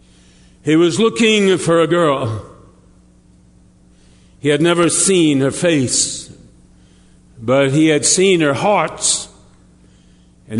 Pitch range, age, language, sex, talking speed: 135-190 Hz, 60-79, English, male, 110 wpm